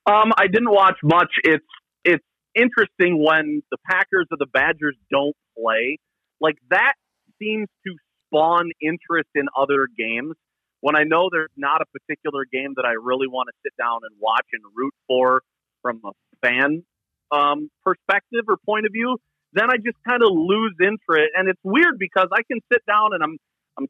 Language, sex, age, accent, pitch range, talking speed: English, male, 30-49, American, 125-185 Hz, 180 wpm